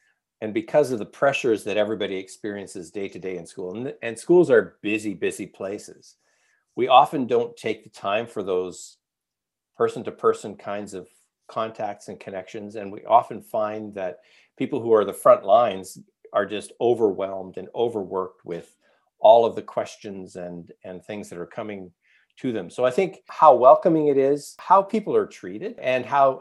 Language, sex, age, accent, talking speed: English, male, 50-69, American, 175 wpm